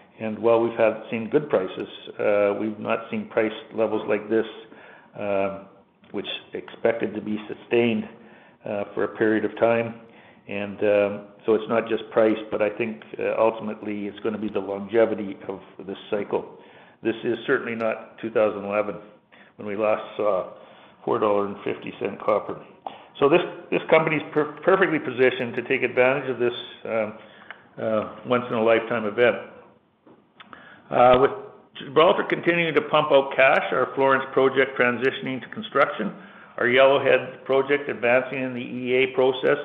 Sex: male